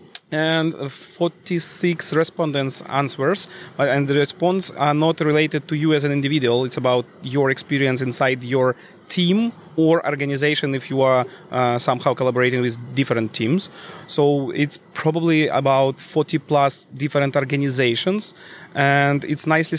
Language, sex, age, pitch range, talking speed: English, male, 30-49, 135-160 Hz, 135 wpm